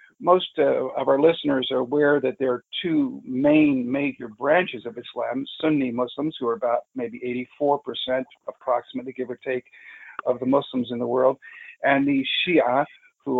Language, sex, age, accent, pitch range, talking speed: English, male, 50-69, American, 125-185 Hz, 165 wpm